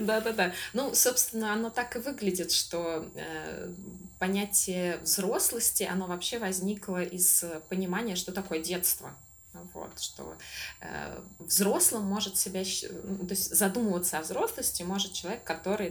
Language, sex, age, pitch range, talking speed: Russian, female, 20-39, 170-210 Hz, 125 wpm